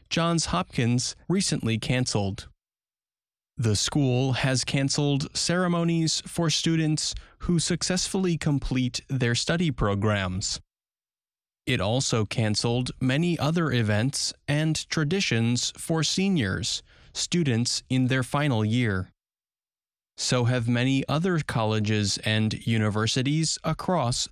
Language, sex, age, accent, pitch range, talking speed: English, male, 20-39, American, 115-160 Hz, 100 wpm